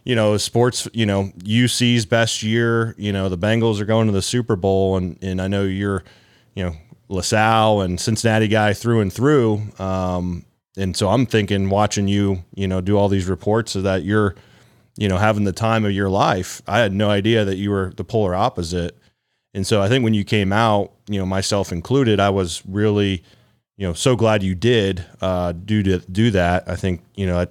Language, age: English, 30-49